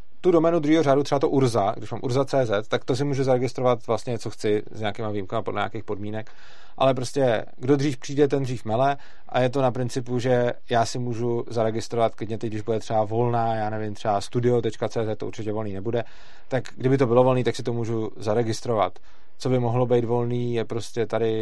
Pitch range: 110-130 Hz